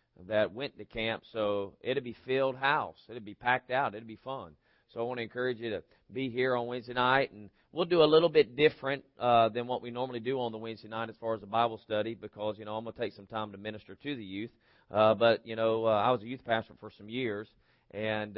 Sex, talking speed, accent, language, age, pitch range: male, 265 wpm, American, English, 40-59, 110-130 Hz